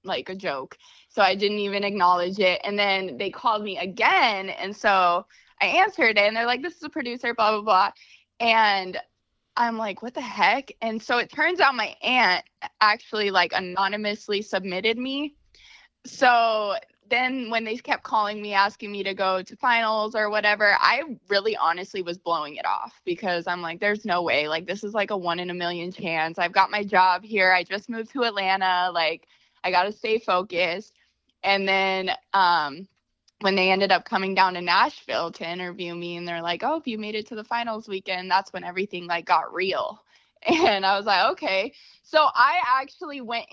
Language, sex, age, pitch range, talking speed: English, female, 20-39, 190-250 Hz, 195 wpm